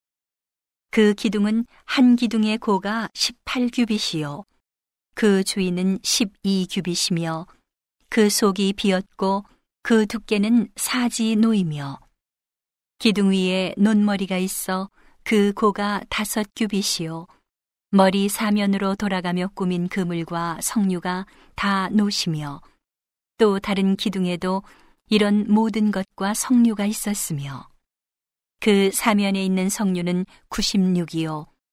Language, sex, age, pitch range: Korean, female, 40-59, 185-215 Hz